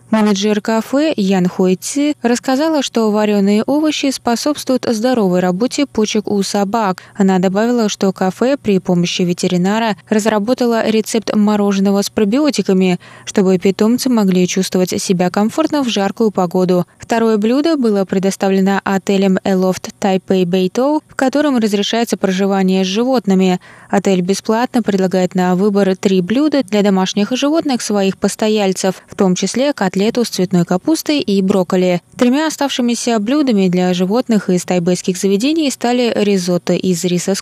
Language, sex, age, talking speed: Russian, female, 20-39, 135 wpm